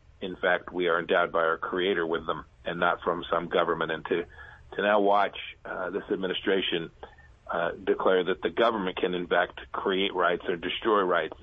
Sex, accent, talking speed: male, American, 190 wpm